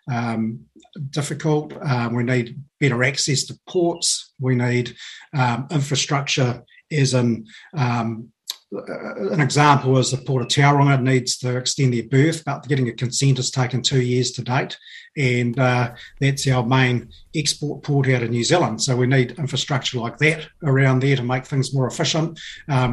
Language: English